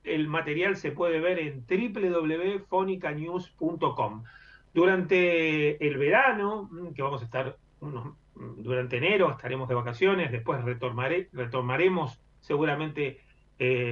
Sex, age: male, 30-49